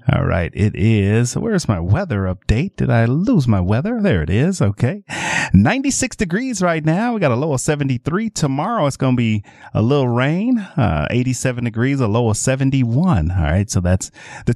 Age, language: 30-49, English